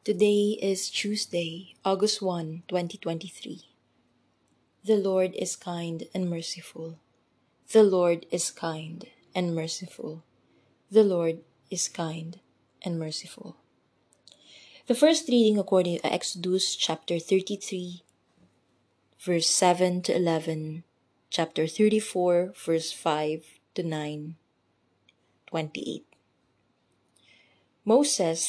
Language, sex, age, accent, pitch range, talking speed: English, female, 20-39, Filipino, 155-185 Hz, 95 wpm